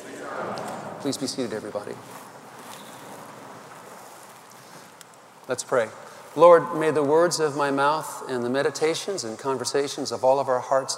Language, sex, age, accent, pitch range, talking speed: English, male, 40-59, American, 125-150 Hz, 125 wpm